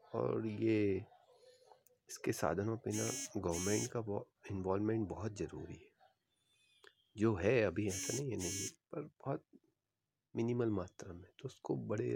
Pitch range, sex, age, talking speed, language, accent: 100-120 Hz, male, 40-59, 135 wpm, Hindi, native